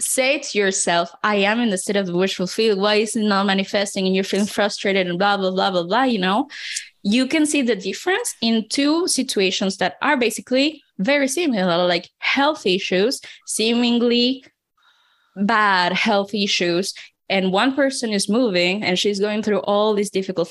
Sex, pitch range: female, 205-275 Hz